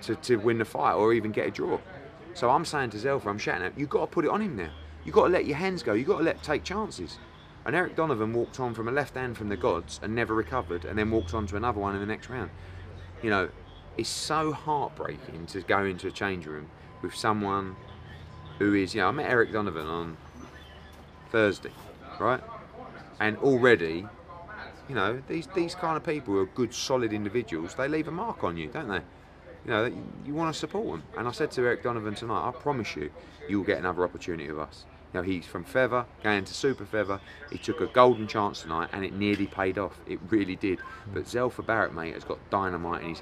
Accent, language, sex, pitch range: British, English, male, 95-150 Hz